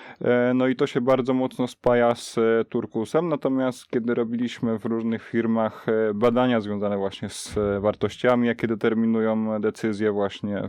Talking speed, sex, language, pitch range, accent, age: 135 wpm, male, Polish, 105-120 Hz, native, 20-39